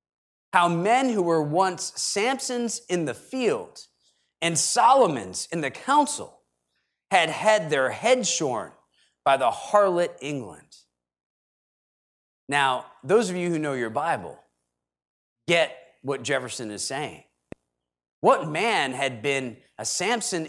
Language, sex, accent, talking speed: English, male, American, 125 wpm